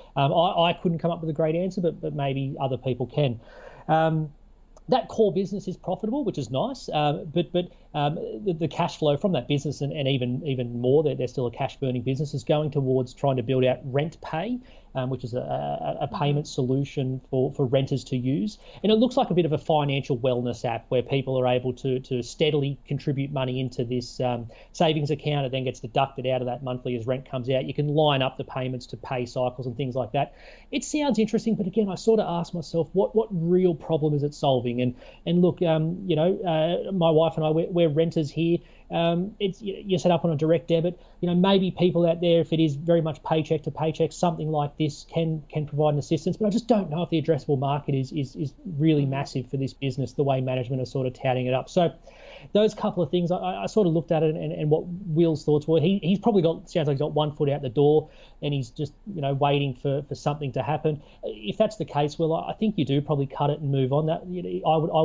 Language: English